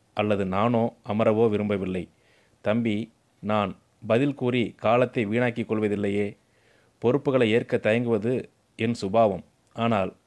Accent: native